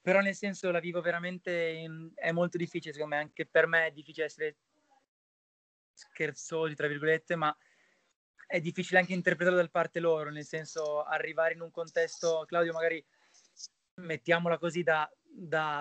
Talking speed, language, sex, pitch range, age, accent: 150 wpm, Italian, male, 150-170 Hz, 20-39, native